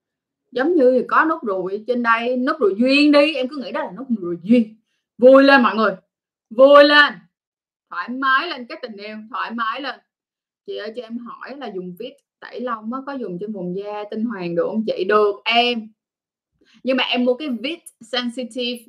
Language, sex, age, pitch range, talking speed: Vietnamese, female, 20-39, 205-260 Hz, 200 wpm